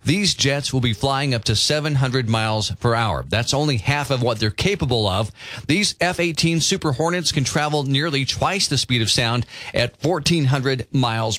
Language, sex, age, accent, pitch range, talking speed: English, male, 40-59, American, 120-165 Hz, 180 wpm